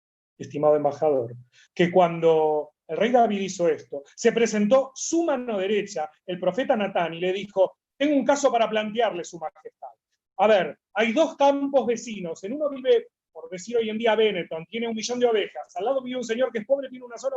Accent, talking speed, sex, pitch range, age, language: Argentinian, 200 wpm, male, 170-240 Hz, 30-49, Spanish